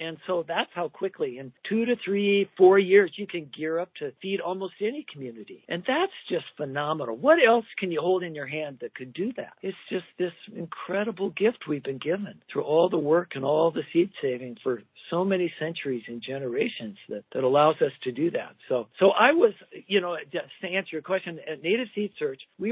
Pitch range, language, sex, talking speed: 140-190 Hz, English, male, 215 wpm